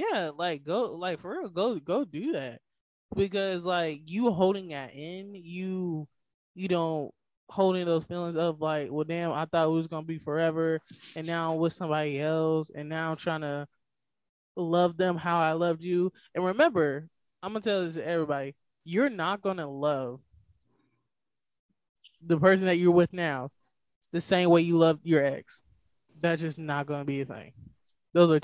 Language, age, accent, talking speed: English, 20-39, American, 190 wpm